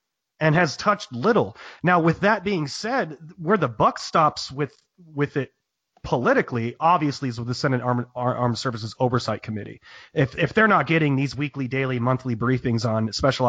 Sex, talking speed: male, 175 wpm